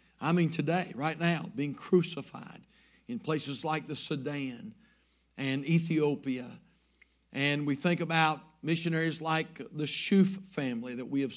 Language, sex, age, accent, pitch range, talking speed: English, male, 50-69, American, 140-185 Hz, 135 wpm